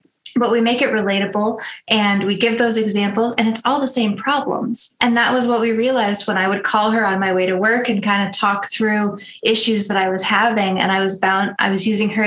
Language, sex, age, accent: English, female, 20-39, American